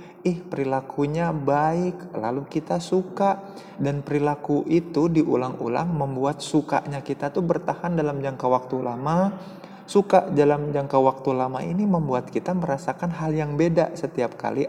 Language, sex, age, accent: Indonesian, male, 20-39, native